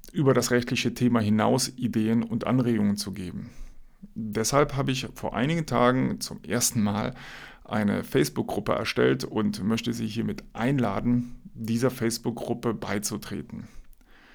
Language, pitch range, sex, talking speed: German, 110-130 Hz, male, 125 wpm